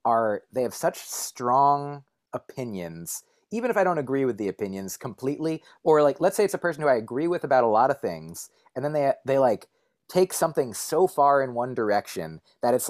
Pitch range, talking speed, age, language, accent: 120-155 Hz, 210 wpm, 30-49, English, American